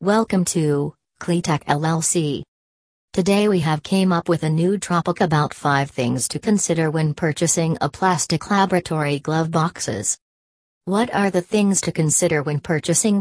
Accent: American